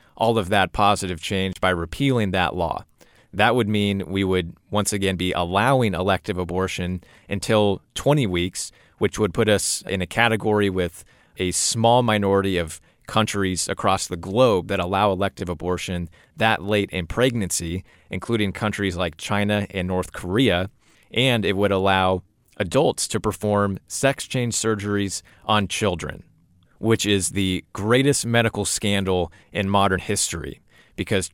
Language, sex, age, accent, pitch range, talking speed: English, male, 30-49, American, 90-115 Hz, 145 wpm